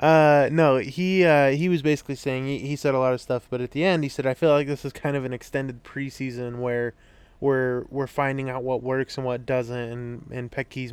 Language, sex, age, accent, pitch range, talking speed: English, male, 20-39, American, 125-140 Hz, 240 wpm